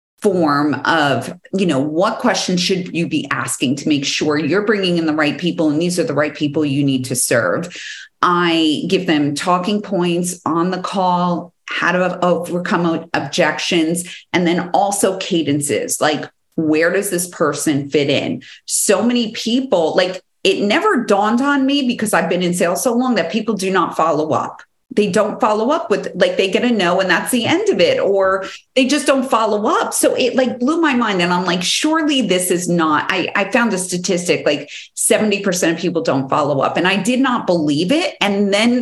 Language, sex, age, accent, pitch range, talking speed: English, female, 40-59, American, 175-235 Hz, 200 wpm